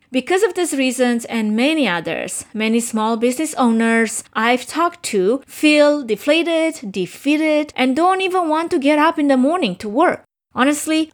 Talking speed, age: 160 wpm, 20-39